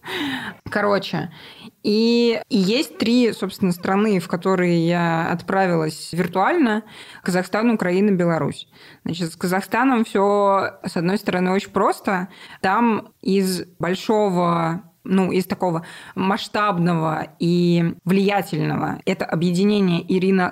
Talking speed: 100 wpm